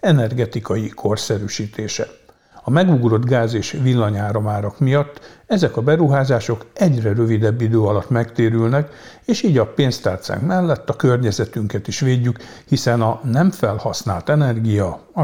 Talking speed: 120 wpm